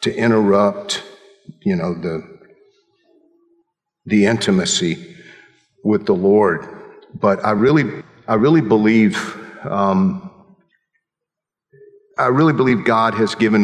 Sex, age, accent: male, 50-69, American